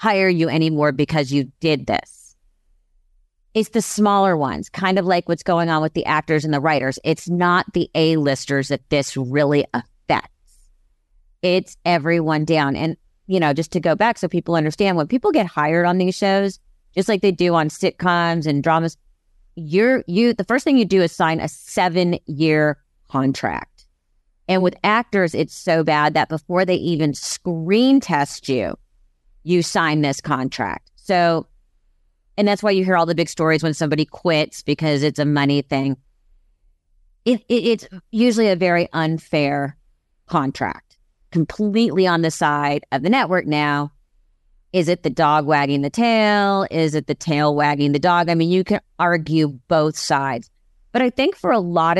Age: 30-49